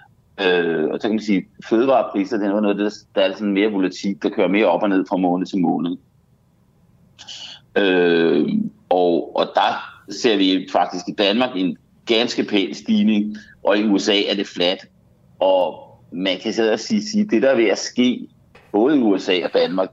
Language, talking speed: Danish, 190 wpm